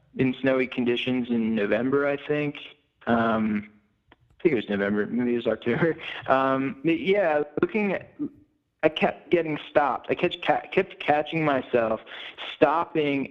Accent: American